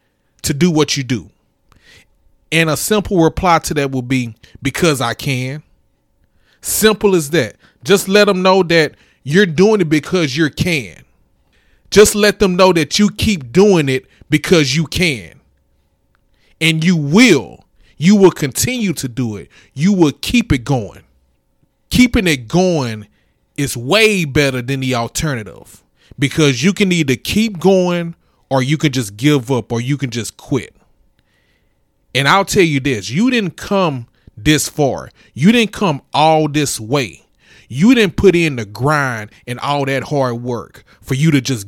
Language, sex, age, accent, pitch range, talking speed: English, male, 30-49, American, 120-175 Hz, 165 wpm